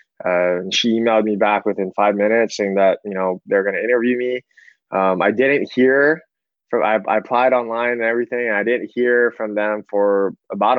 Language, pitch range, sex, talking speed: English, 100-110 Hz, male, 205 wpm